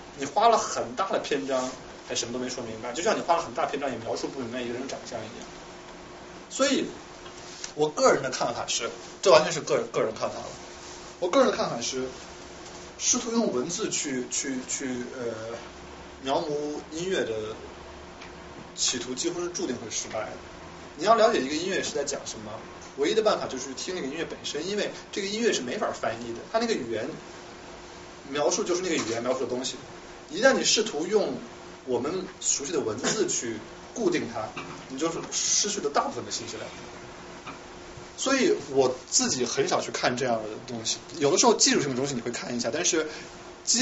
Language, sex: Chinese, male